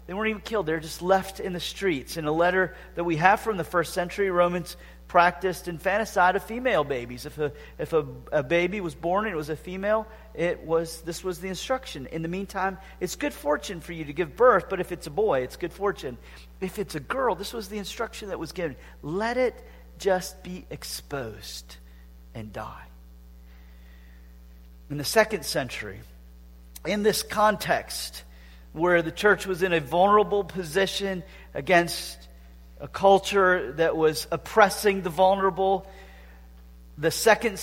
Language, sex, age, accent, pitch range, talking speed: English, male, 40-59, American, 140-195 Hz, 170 wpm